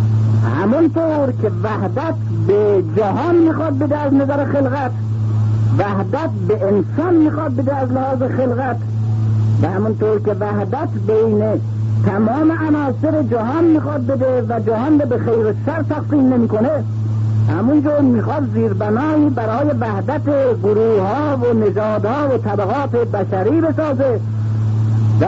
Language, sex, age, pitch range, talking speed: Persian, male, 50-69, 105-125 Hz, 120 wpm